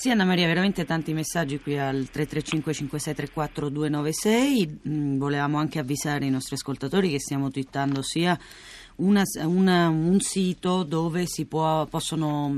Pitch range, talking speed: 150-190 Hz, 140 wpm